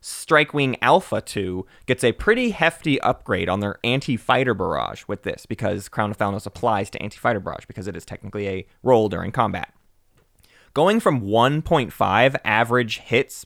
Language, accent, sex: English, American, male